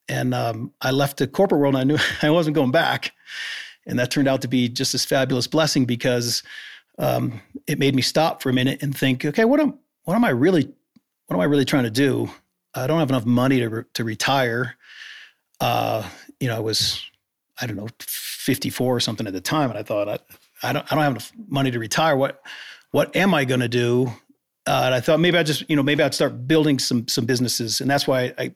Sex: male